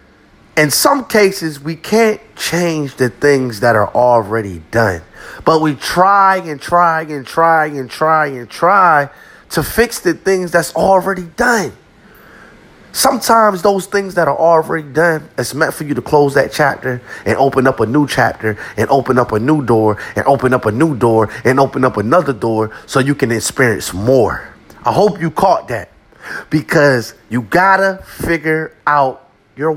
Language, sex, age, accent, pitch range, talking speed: English, male, 30-49, American, 135-195 Hz, 170 wpm